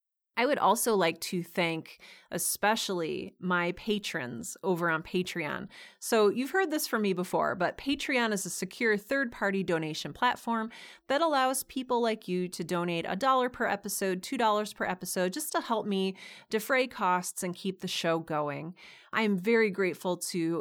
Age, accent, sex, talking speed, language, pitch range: 30-49, American, female, 170 wpm, English, 180-235 Hz